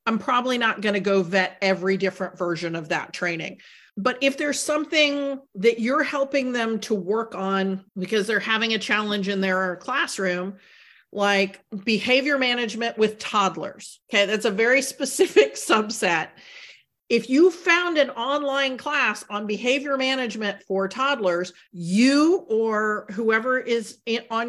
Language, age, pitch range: English, 40-59, 205-260 Hz